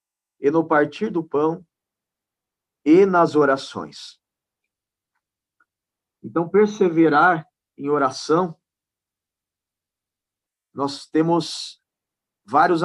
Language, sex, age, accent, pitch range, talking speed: Portuguese, male, 40-59, Brazilian, 145-175 Hz, 70 wpm